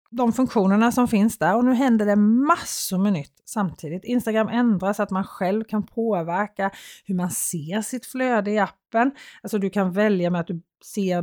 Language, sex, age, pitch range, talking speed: Swedish, female, 30-49, 185-235 Hz, 190 wpm